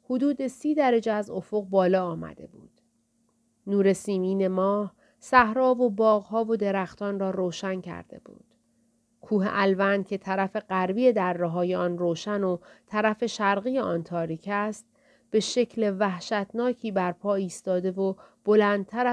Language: Persian